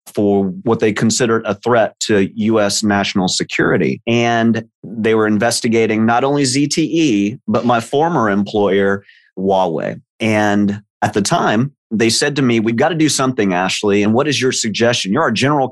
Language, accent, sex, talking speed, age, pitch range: English, American, male, 170 wpm, 30-49, 110-135 Hz